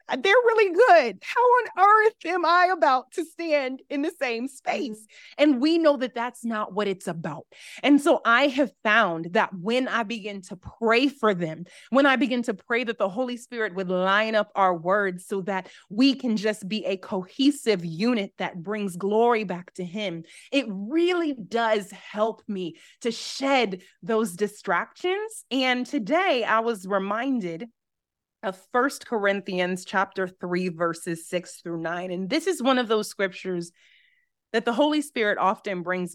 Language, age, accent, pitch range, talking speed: English, 30-49, American, 190-280 Hz, 170 wpm